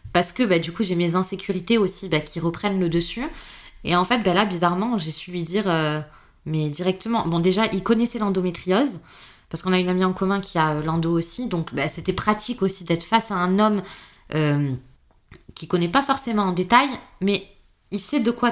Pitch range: 170-215 Hz